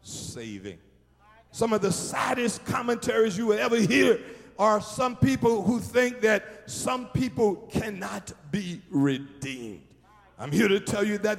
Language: English